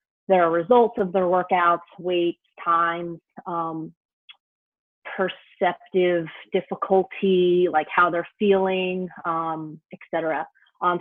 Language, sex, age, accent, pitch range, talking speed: English, female, 30-49, American, 175-195 Hz, 100 wpm